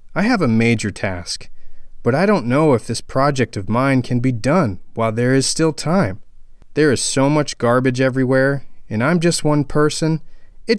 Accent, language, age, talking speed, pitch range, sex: American, English, 30-49, 190 wpm, 110-165 Hz, male